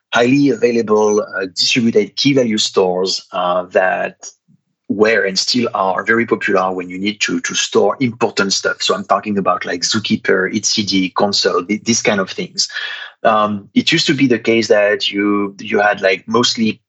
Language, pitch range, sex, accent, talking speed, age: English, 100-125 Hz, male, French, 175 wpm, 30-49